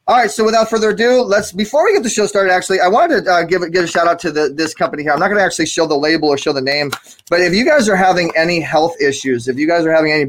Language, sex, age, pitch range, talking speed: English, male, 20-39, 155-195 Hz, 315 wpm